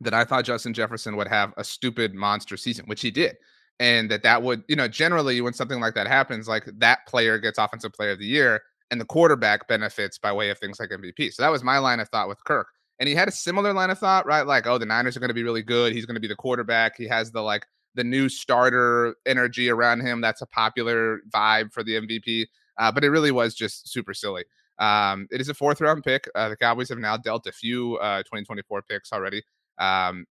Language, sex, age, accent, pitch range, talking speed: English, male, 30-49, American, 105-130 Hz, 245 wpm